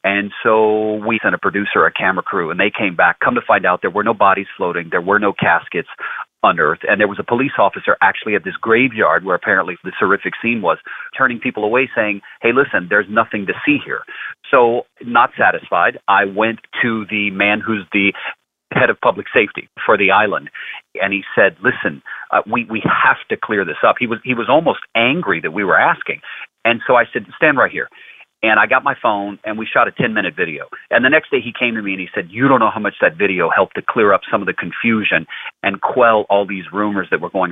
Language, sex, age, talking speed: English, male, 40-59, 235 wpm